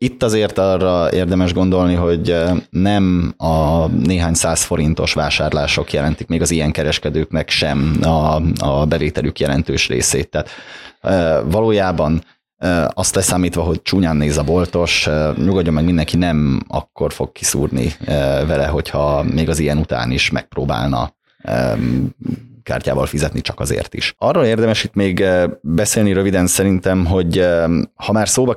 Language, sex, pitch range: Hungarian, male, 80-95 Hz